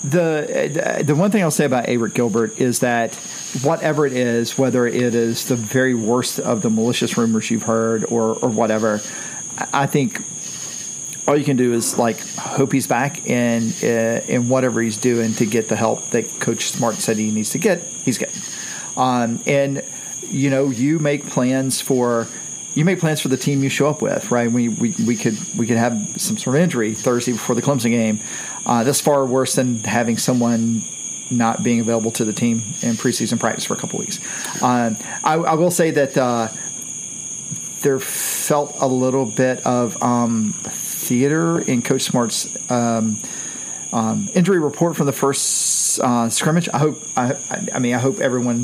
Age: 40-59